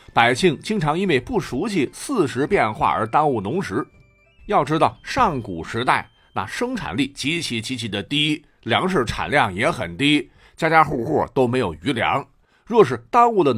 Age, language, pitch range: 50-69, Chinese, 130-200 Hz